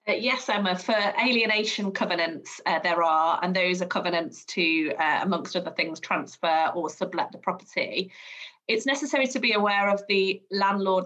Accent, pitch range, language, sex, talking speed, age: British, 180-220 Hz, English, female, 170 wpm, 30-49